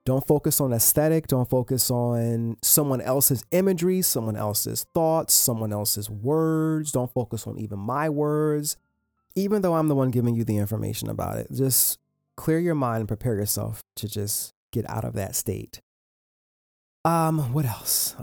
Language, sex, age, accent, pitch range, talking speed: English, male, 30-49, American, 115-155 Hz, 165 wpm